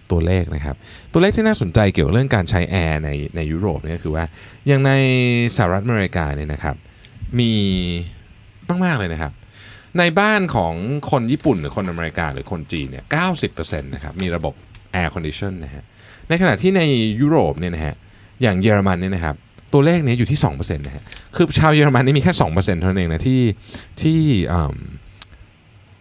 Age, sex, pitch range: 20-39, male, 85-125 Hz